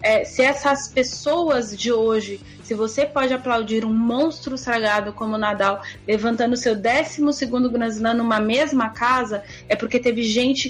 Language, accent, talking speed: Portuguese, Brazilian, 150 wpm